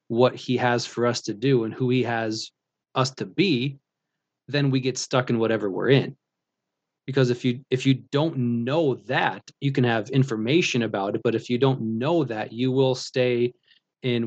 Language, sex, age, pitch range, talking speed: English, male, 20-39, 120-135 Hz, 195 wpm